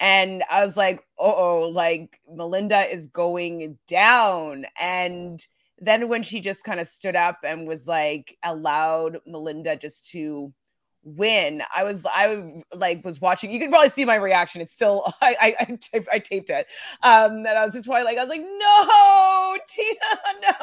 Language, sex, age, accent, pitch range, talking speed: English, female, 30-49, American, 180-255 Hz, 170 wpm